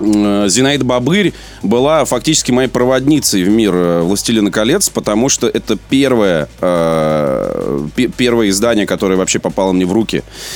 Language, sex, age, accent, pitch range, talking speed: Russian, male, 30-49, native, 90-125 Hz, 130 wpm